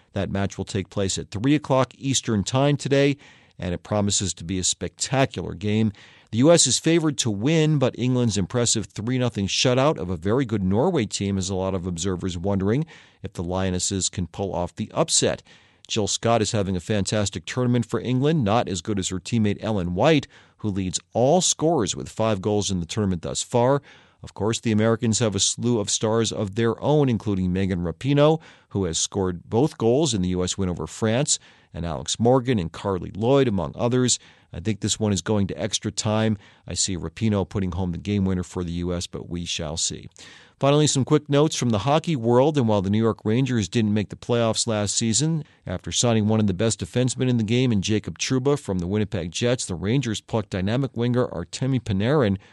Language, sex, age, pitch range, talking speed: English, male, 40-59, 95-125 Hz, 205 wpm